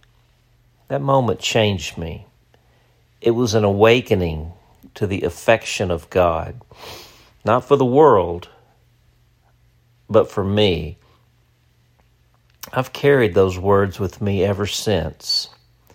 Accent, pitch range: American, 90-120 Hz